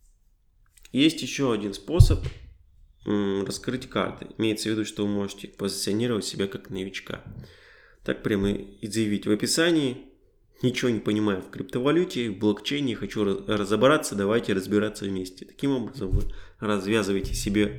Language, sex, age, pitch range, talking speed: Russian, male, 20-39, 100-110 Hz, 130 wpm